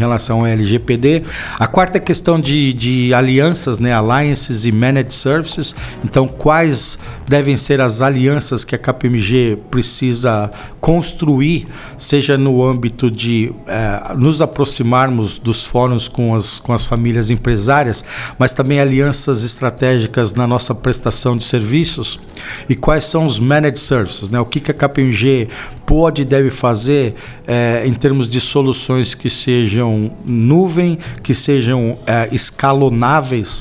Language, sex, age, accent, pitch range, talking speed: English, male, 50-69, Brazilian, 120-140 Hz, 135 wpm